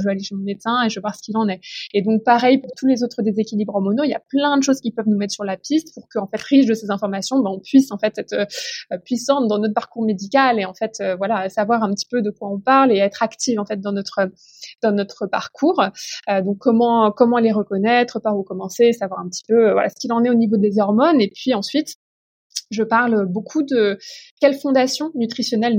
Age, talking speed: 20-39, 250 wpm